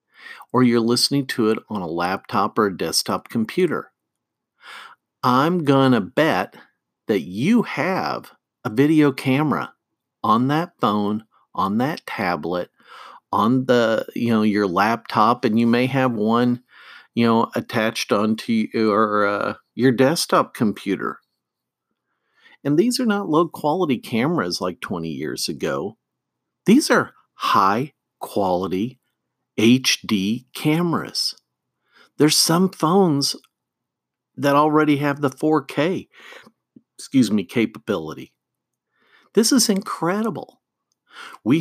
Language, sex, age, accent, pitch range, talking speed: English, male, 50-69, American, 115-165 Hz, 115 wpm